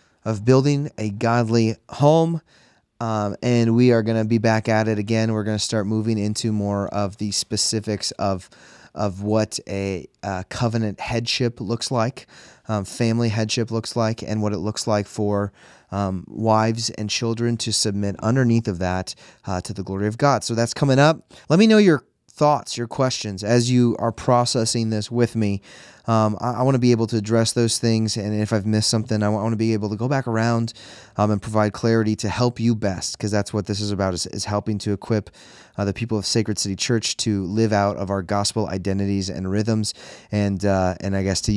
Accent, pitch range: American, 105-115 Hz